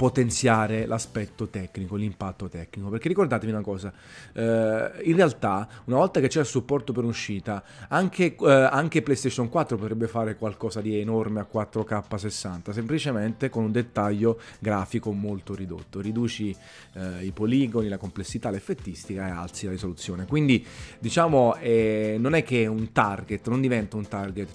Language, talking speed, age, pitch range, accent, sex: Italian, 155 wpm, 30-49, 100-125 Hz, native, male